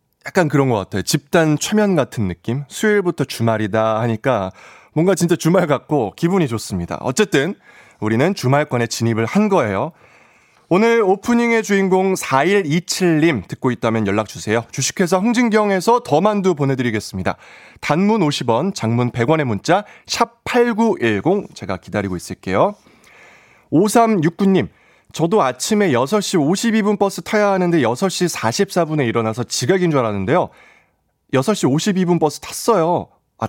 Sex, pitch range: male, 115-195 Hz